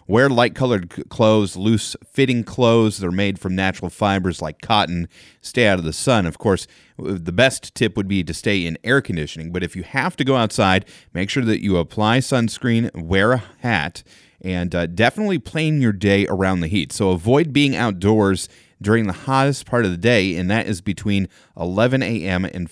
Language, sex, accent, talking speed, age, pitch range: English, male, American, 195 wpm, 30-49, 90-120 Hz